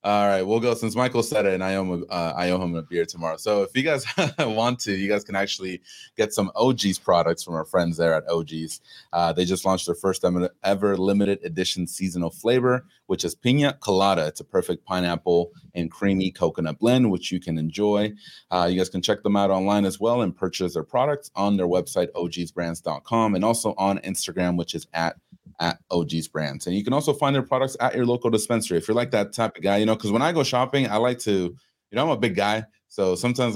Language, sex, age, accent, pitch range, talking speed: English, male, 30-49, American, 85-110 Hz, 225 wpm